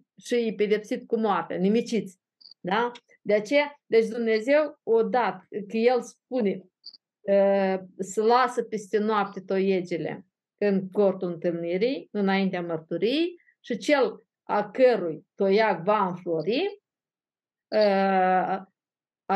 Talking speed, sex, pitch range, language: 105 wpm, female, 185-230 Hz, Romanian